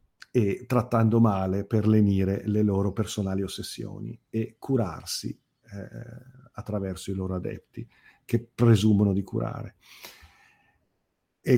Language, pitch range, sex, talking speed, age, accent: Italian, 105-125 Hz, male, 110 wpm, 50-69, native